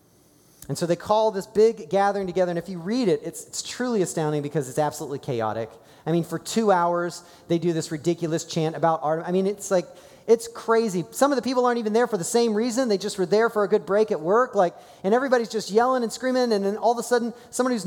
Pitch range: 175-250 Hz